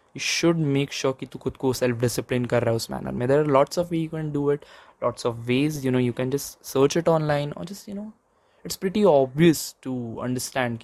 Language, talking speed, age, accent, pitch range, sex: English, 225 wpm, 20-39, Indian, 120-145 Hz, male